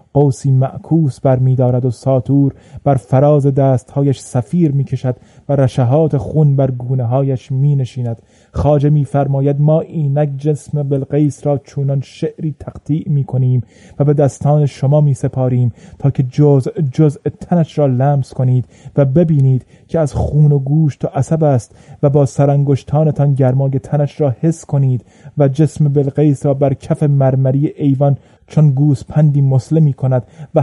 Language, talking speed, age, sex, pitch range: Persian, 150 wpm, 30-49, male, 130-150 Hz